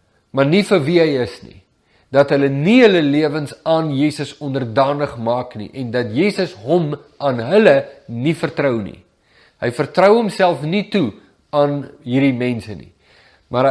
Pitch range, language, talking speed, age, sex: 125-160 Hz, English, 160 wpm, 50-69, male